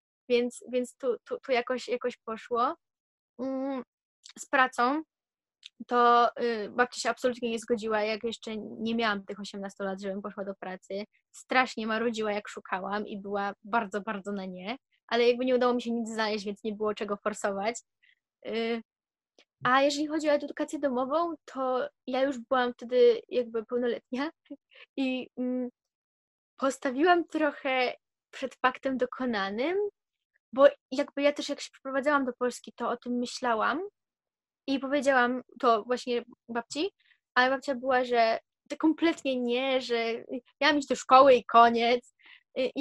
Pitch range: 235-275 Hz